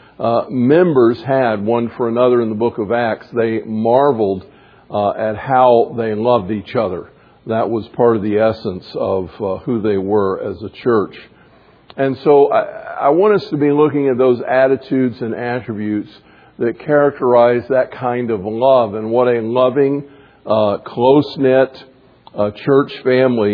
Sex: male